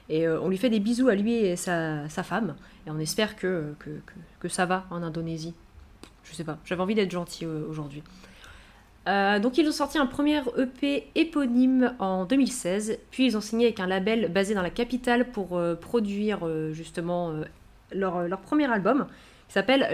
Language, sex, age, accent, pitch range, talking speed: French, female, 20-39, French, 180-240 Hz, 200 wpm